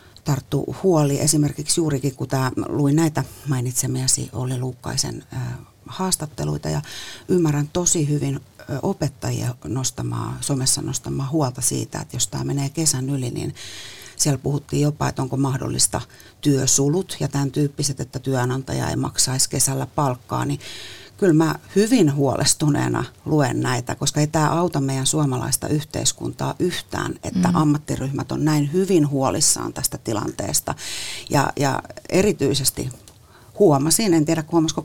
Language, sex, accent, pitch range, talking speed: Finnish, female, native, 130-155 Hz, 130 wpm